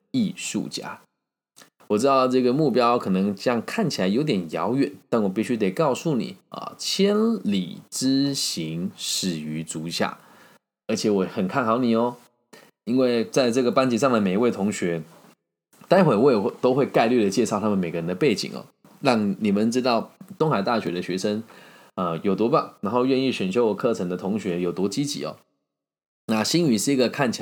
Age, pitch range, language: 20-39, 95-130 Hz, Chinese